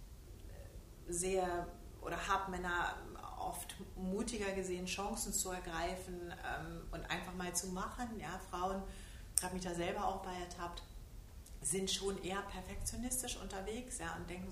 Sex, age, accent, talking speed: female, 30-49, German, 135 wpm